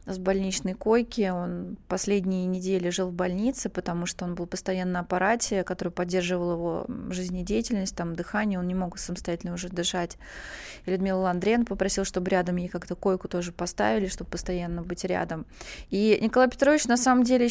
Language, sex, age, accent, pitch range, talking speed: Russian, female, 20-39, native, 185-210 Hz, 170 wpm